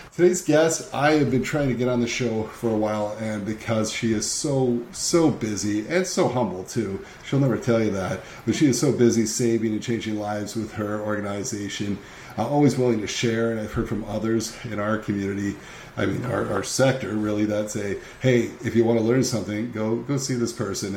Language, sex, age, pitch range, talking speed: English, male, 40-59, 105-130 Hz, 215 wpm